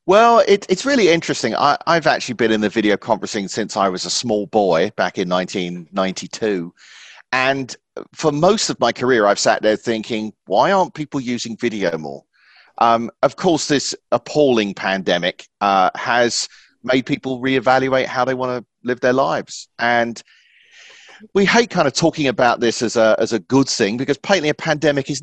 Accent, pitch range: British, 110-150 Hz